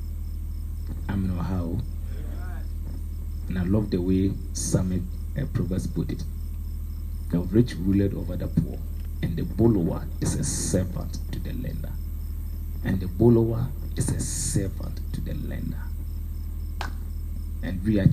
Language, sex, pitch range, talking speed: English, male, 80-90 Hz, 130 wpm